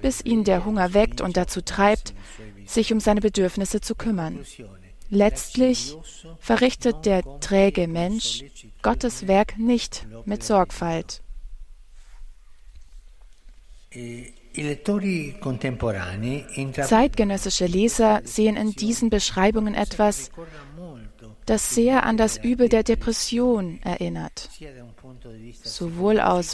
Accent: German